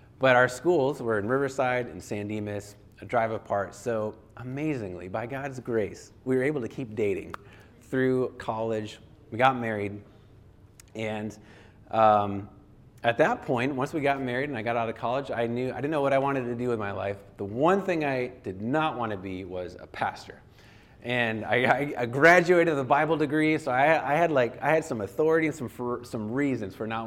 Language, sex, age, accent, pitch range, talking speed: English, male, 30-49, American, 105-130 Hz, 205 wpm